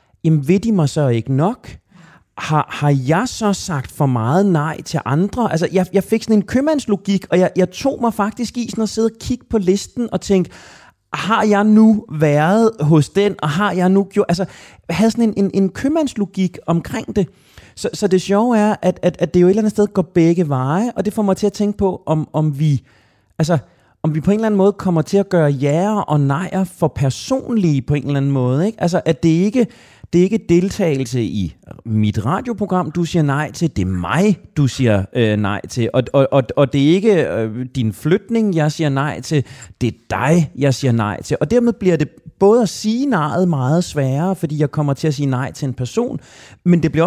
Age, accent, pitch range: 30-49, native, 140-200 Hz